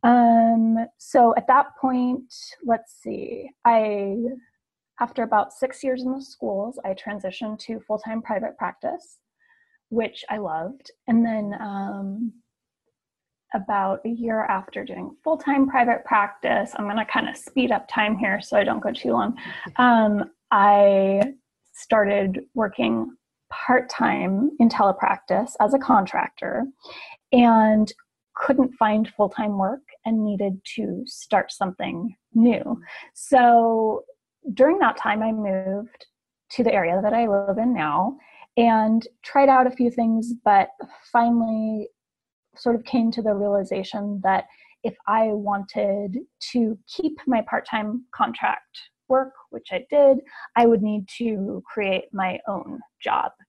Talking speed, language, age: 135 wpm, English, 20-39